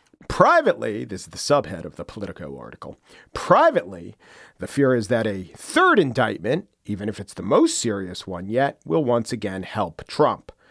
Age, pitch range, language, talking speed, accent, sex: 40-59, 120-165 Hz, English, 170 wpm, American, male